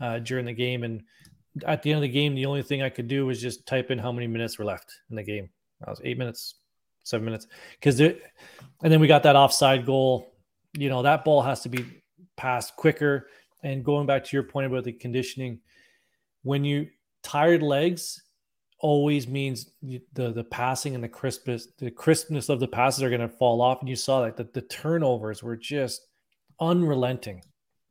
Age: 30-49